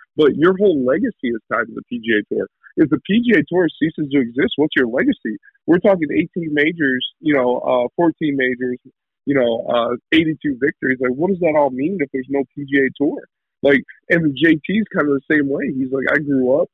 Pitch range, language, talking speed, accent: 130-160 Hz, English, 210 wpm, American